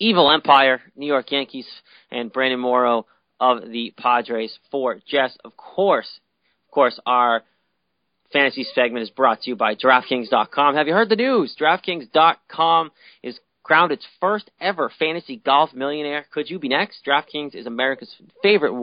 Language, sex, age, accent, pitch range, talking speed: English, male, 30-49, American, 125-150 Hz, 155 wpm